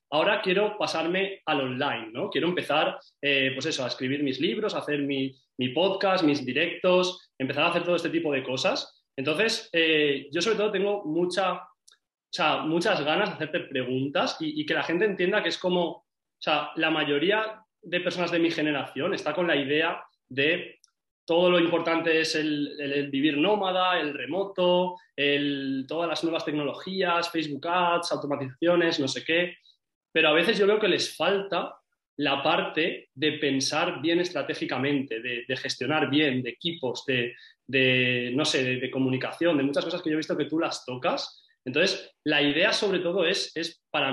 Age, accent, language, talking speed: 20-39, Spanish, Spanish, 180 wpm